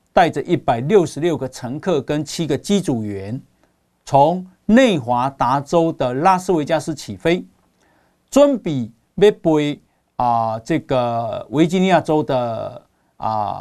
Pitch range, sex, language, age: 125-180 Hz, male, Chinese, 50-69